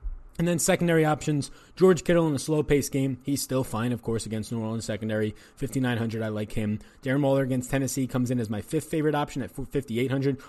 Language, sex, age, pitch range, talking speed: English, male, 20-39, 115-150 Hz, 210 wpm